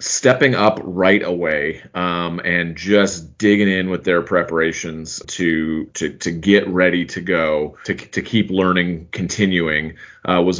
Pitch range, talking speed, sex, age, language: 90-110 Hz, 145 wpm, male, 30-49, English